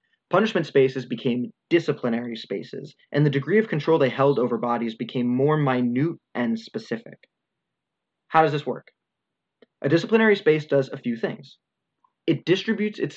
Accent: American